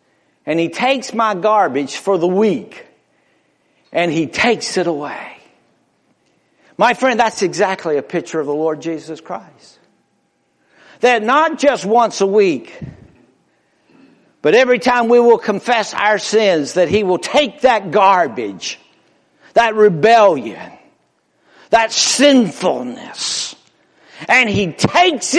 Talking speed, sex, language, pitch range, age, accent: 120 wpm, male, English, 170-245 Hz, 60-79, American